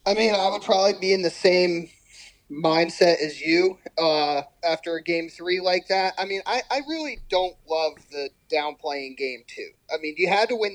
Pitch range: 145-195 Hz